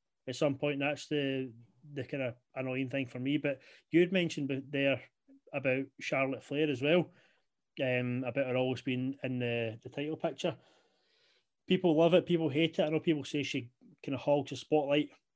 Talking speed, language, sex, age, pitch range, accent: 190 wpm, English, male, 30-49, 130-155 Hz, British